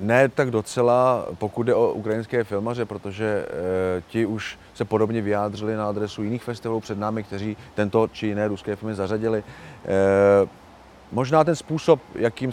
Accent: native